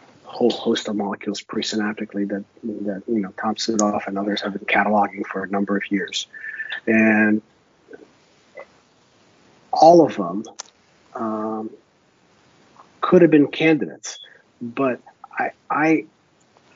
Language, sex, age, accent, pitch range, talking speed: English, male, 40-59, American, 105-125 Hz, 120 wpm